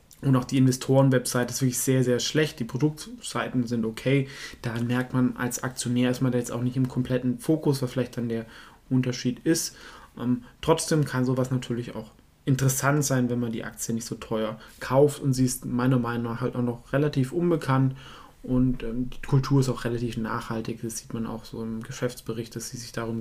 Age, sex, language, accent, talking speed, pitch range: 20-39, male, German, German, 205 wpm, 125-145 Hz